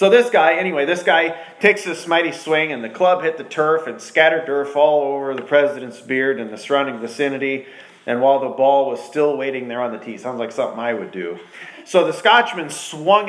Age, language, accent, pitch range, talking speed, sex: 40-59, English, American, 135-185 Hz, 220 wpm, male